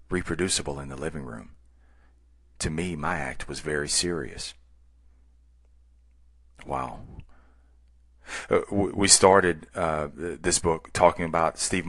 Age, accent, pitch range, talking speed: 40-59, American, 65-105 Hz, 105 wpm